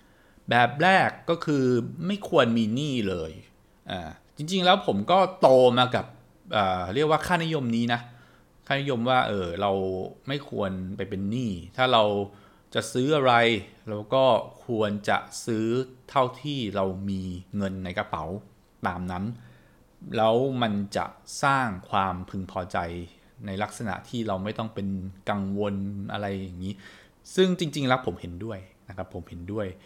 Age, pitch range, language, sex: 20-39, 95-130 Hz, English, male